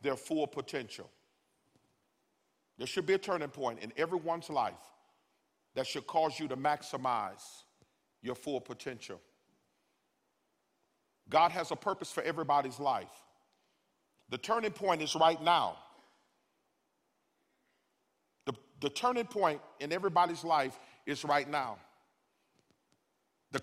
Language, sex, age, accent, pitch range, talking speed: English, male, 40-59, American, 155-195 Hz, 115 wpm